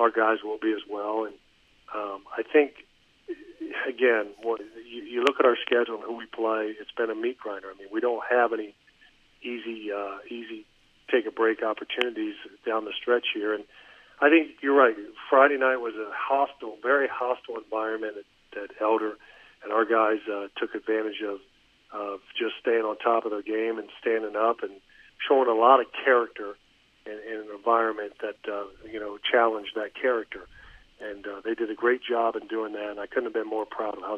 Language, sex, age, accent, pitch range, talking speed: English, male, 40-59, American, 110-125 Hz, 200 wpm